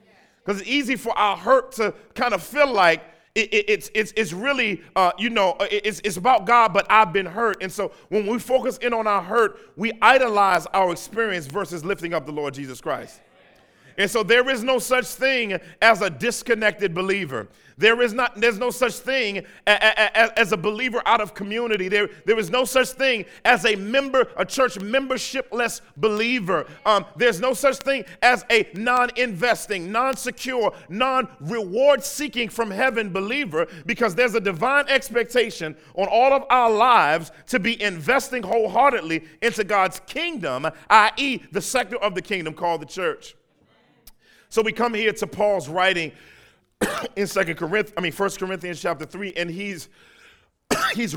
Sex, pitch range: male, 190-245 Hz